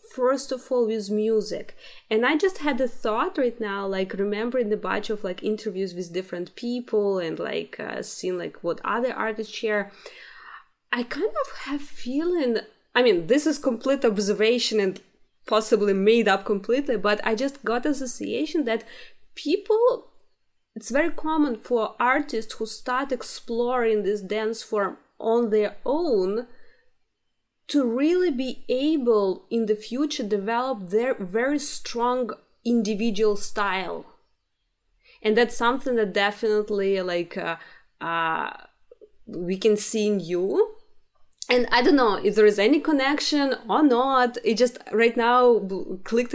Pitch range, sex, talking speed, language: 210-260 Hz, female, 145 wpm, English